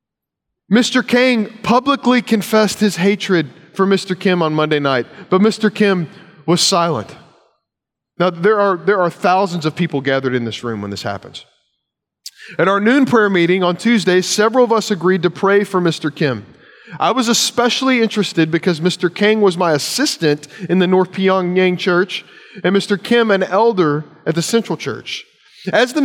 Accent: American